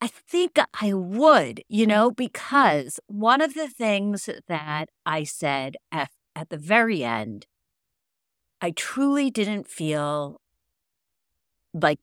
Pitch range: 160-225 Hz